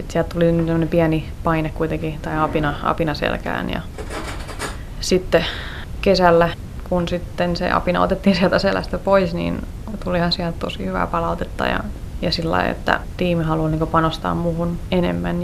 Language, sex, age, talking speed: Finnish, female, 20-39, 155 wpm